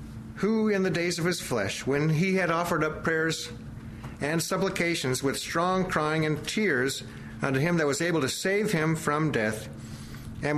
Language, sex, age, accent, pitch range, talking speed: English, male, 50-69, American, 115-160 Hz, 175 wpm